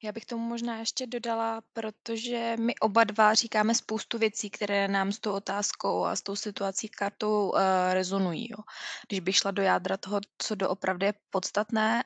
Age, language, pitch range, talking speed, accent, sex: 20-39, Czech, 190-215 Hz, 180 wpm, native, female